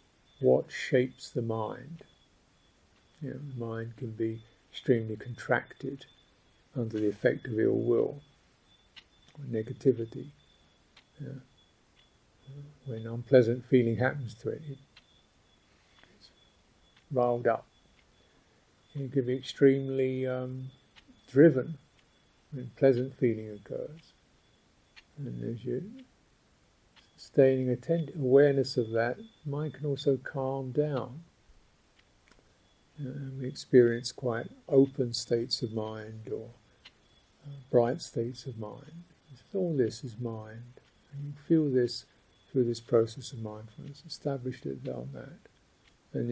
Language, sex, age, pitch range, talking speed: English, male, 50-69, 115-140 Hz, 110 wpm